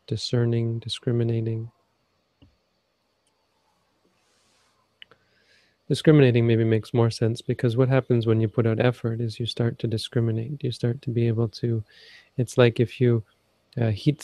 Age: 30-49